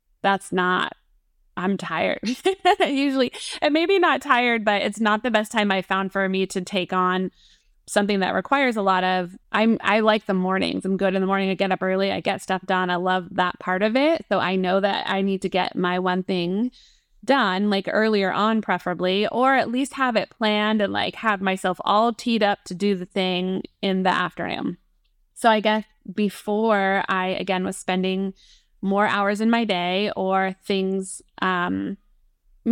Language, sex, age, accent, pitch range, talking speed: English, female, 20-39, American, 185-215 Hz, 195 wpm